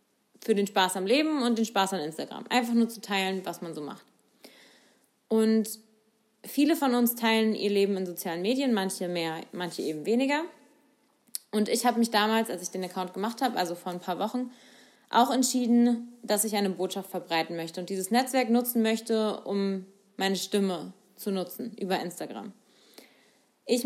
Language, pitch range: German, 190-230 Hz